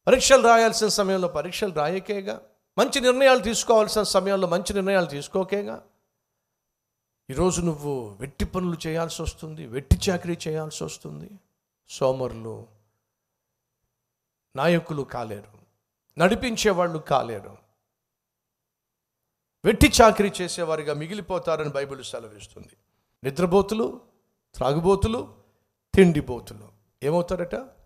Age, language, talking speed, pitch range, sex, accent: 50-69, Telugu, 60 wpm, 120-195 Hz, male, native